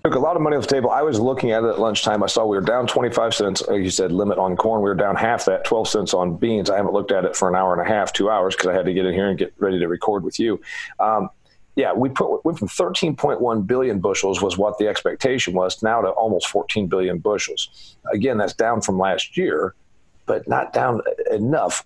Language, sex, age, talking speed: English, male, 40-59, 255 wpm